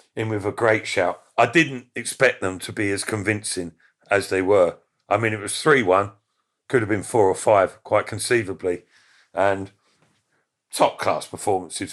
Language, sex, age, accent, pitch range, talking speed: English, male, 50-69, British, 105-130 Hz, 160 wpm